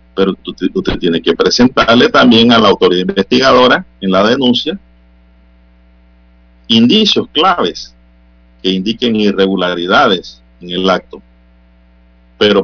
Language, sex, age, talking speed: Spanish, male, 50-69, 110 wpm